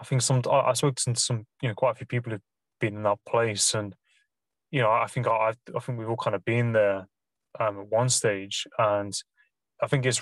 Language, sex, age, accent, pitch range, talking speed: English, male, 20-39, British, 110-130 Hz, 240 wpm